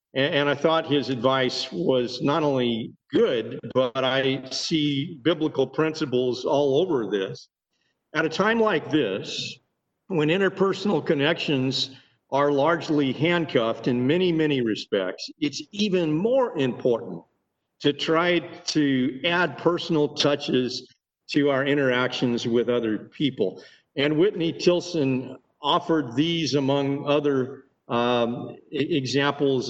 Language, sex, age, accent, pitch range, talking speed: English, male, 50-69, American, 135-180 Hz, 115 wpm